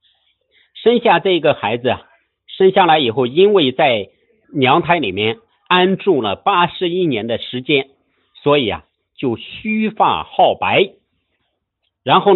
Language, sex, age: Chinese, male, 50-69